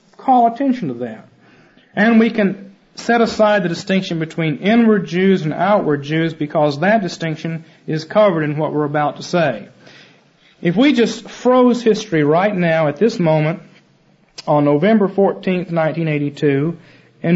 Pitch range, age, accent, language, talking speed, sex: 160-215 Hz, 40-59, American, English, 140 wpm, male